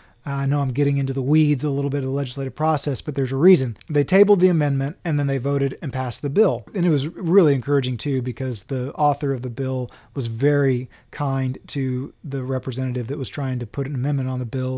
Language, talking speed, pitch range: English, 235 wpm, 130-155 Hz